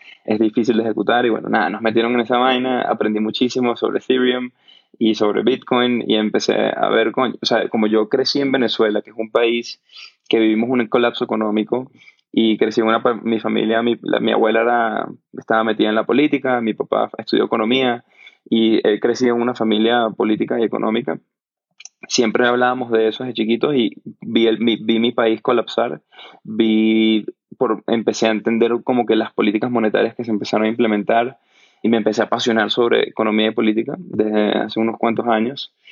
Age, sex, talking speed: 20-39, male, 185 wpm